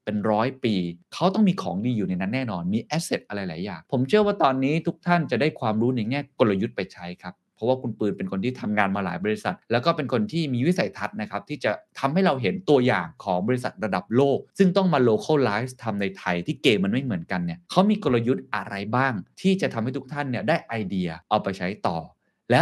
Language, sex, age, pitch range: Thai, male, 20-39, 105-150 Hz